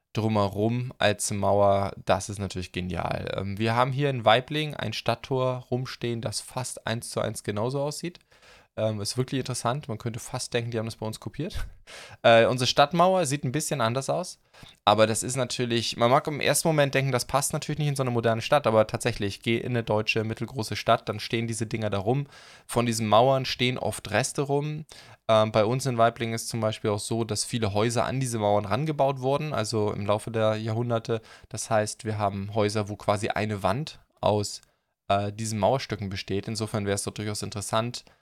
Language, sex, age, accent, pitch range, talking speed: German, male, 20-39, German, 105-125 Hz, 200 wpm